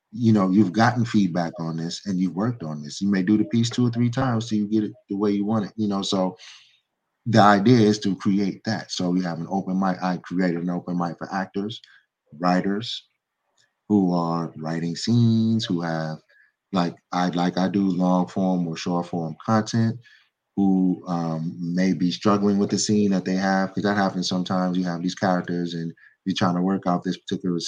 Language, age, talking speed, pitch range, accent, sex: English, 30-49, 210 wpm, 85-100 Hz, American, male